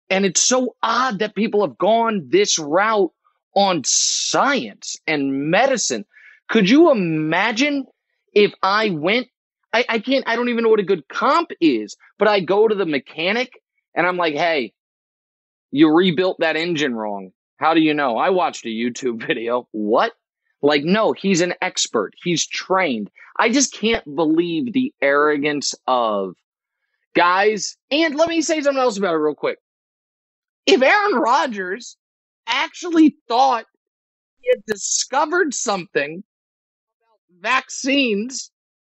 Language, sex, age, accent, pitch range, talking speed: English, male, 30-49, American, 185-290 Hz, 145 wpm